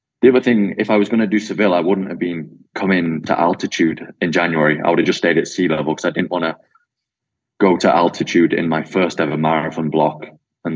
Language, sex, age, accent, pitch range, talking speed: English, male, 20-39, British, 80-100 Hz, 235 wpm